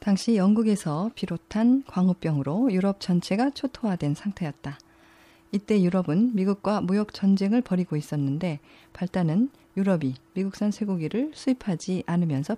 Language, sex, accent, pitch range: Korean, female, native, 165-225 Hz